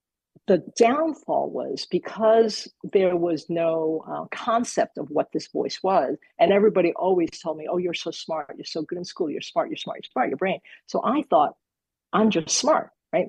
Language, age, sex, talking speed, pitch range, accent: English, 50-69, female, 195 wpm, 165-220 Hz, American